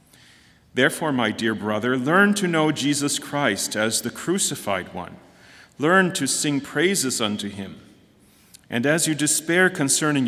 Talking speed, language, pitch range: 140 wpm, English, 105-140 Hz